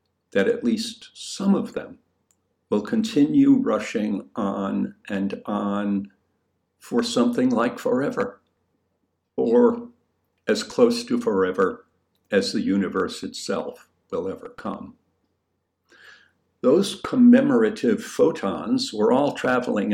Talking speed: 100 wpm